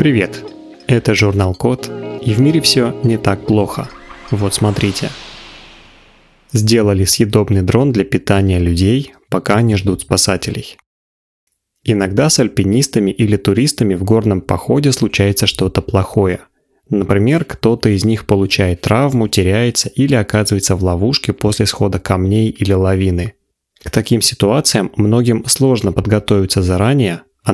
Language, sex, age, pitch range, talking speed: Russian, male, 20-39, 95-115 Hz, 125 wpm